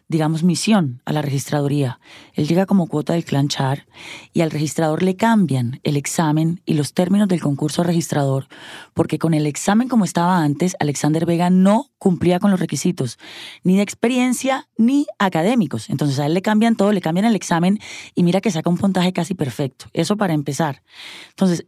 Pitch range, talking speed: 150-195 Hz, 185 wpm